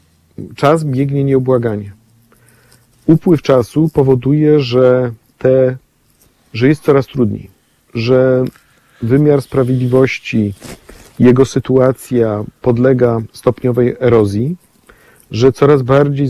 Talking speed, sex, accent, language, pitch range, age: 85 wpm, male, native, Polish, 120-145 Hz, 50-69